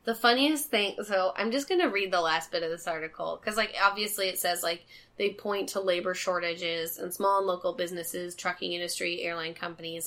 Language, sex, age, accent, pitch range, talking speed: English, female, 10-29, American, 175-265 Hz, 210 wpm